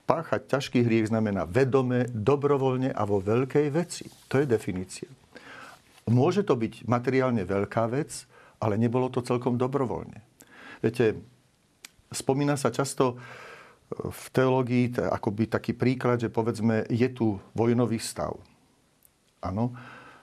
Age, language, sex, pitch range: 50-69, Slovak, male, 110-130 Hz